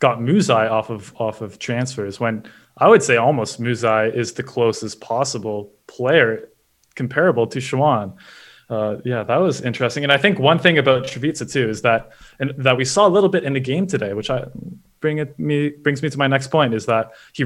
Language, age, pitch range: English, 20-39, 110-145 Hz